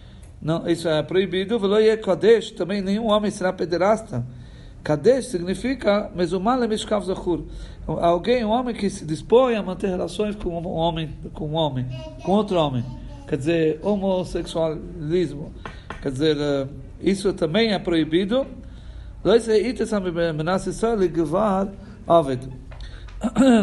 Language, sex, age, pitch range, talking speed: Portuguese, male, 50-69, 145-195 Hz, 100 wpm